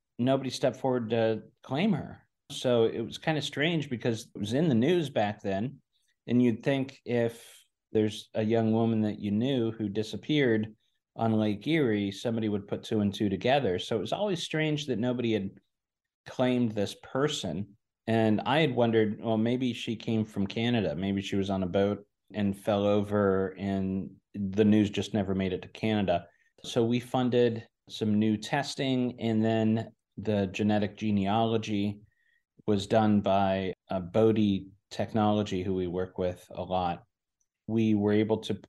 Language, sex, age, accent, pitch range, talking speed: English, male, 30-49, American, 100-120 Hz, 170 wpm